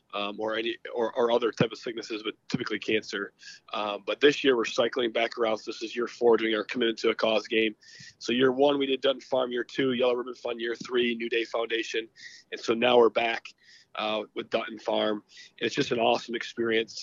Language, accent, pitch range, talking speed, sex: English, American, 110-170 Hz, 225 wpm, male